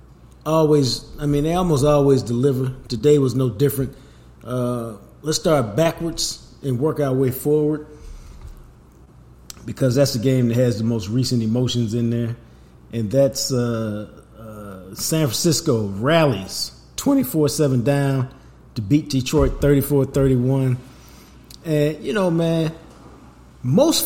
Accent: American